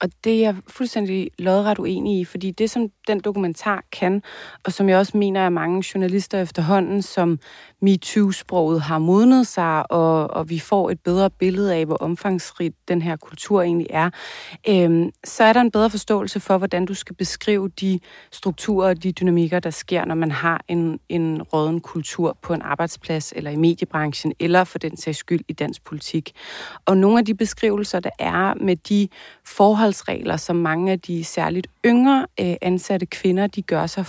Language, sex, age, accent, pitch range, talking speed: Danish, female, 30-49, native, 170-200 Hz, 185 wpm